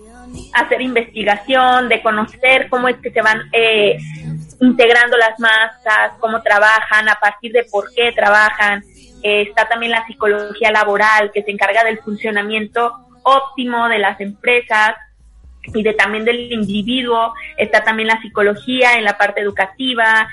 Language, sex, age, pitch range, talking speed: Spanish, female, 20-39, 210-250 Hz, 145 wpm